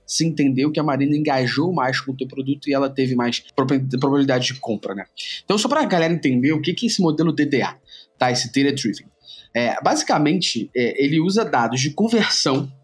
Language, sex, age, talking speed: Portuguese, male, 20-39, 195 wpm